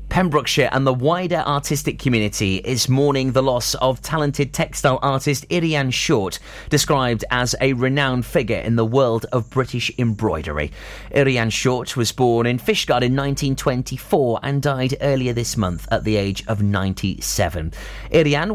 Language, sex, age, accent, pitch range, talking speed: English, male, 30-49, British, 110-145 Hz, 150 wpm